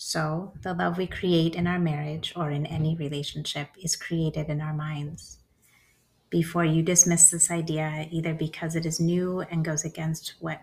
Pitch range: 155-175 Hz